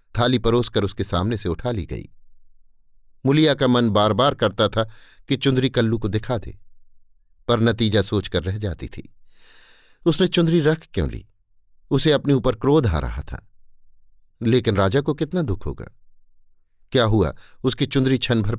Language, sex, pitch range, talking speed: Hindi, male, 95-135 Hz, 160 wpm